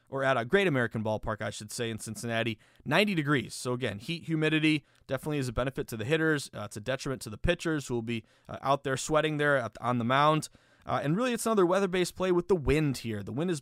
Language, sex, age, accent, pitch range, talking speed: English, male, 20-39, American, 125-170 Hz, 255 wpm